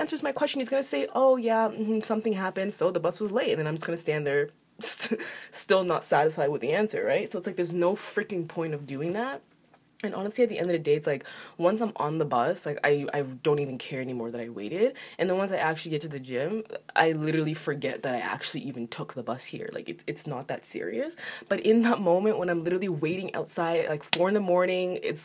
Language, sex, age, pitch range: English, female, 20-39, 150-195 Hz